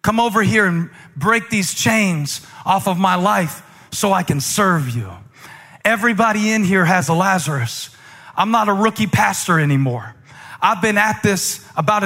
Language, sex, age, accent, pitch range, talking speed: English, male, 40-59, American, 170-225 Hz, 165 wpm